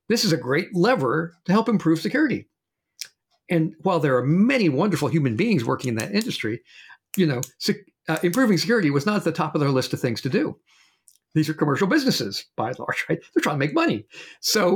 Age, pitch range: 50-69, 135-185 Hz